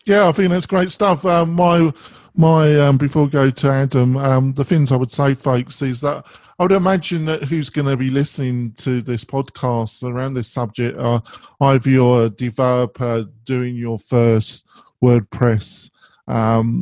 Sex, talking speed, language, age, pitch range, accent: male, 170 wpm, English, 50-69, 115-135 Hz, British